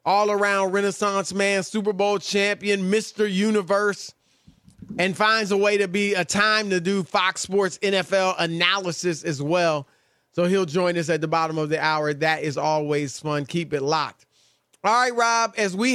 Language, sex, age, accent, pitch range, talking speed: English, male, 20-39, American, 165-210 Hz, 175 wpm